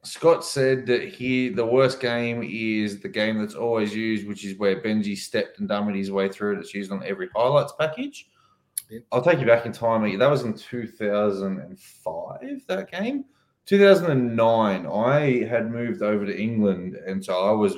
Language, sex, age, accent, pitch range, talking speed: English, male, 20-39, Australian, 95-120 Hz, 200 wpm